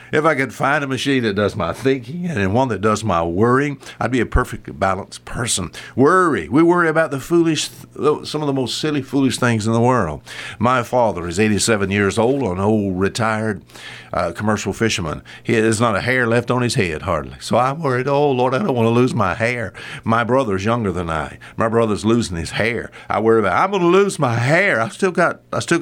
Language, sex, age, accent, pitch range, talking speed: English, male, 60-79, American, 100-135 Hz, 215 wpm